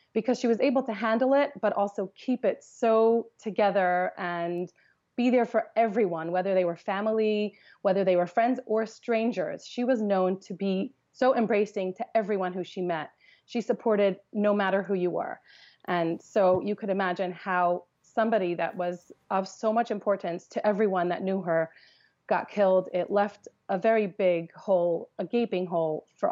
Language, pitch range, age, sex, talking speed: English, 175-210 Hz, 30-49, female, 175 wpm